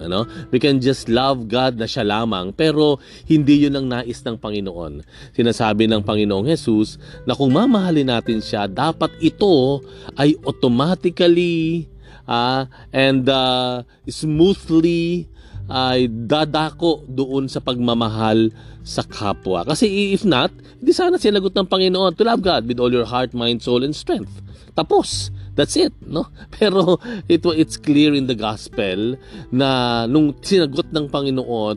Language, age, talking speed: Filipino, 40-59, 140 wpm